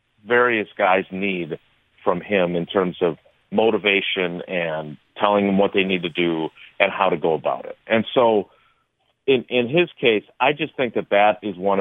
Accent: American